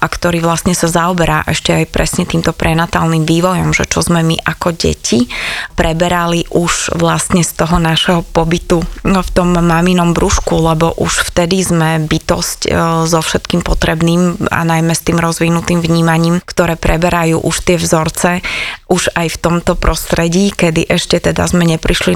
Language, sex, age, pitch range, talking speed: Slovak, female, 20-39, 165-175 Hz, 155 wpm